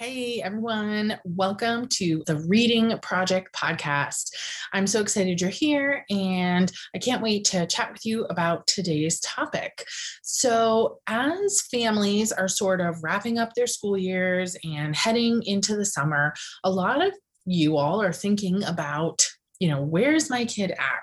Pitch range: 160-225 Hz